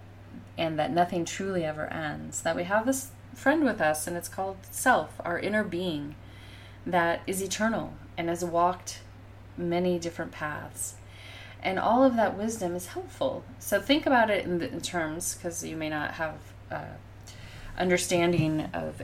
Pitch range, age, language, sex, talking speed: 145-185 Hz, 30-49, English, female, 160 wpm